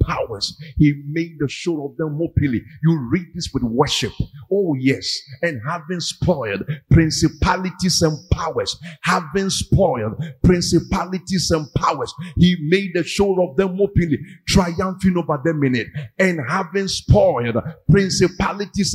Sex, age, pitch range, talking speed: male, 50-69, 165-220 Hz, 135 wpm